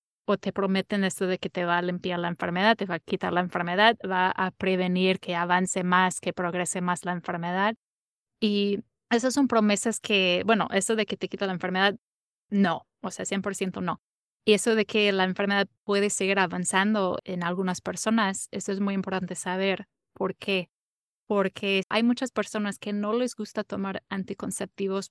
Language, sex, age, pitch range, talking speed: Spanish, female, 20-39, 185-210 Hz, 180 wpm